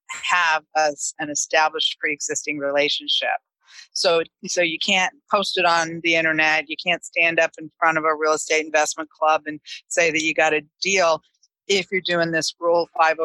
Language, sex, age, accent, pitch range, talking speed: English, female, 40-59, American, 155-175 Hz, 170 wpm